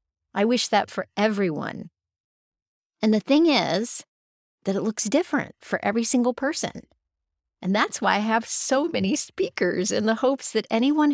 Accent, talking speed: American, 160 wpm